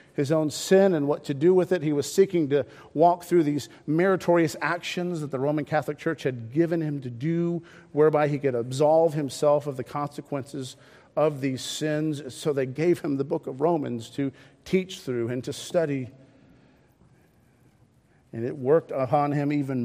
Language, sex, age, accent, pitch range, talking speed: English, male, 50-69, American, 145-170 Hz, 180 wpm